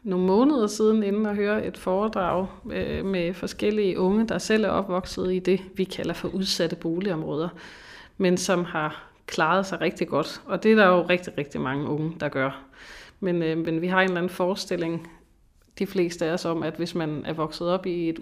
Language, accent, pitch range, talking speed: Danish, native, 170-200 Hz, 200 wpm